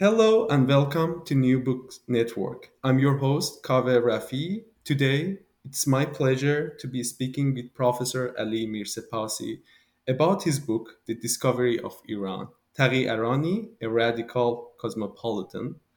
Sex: male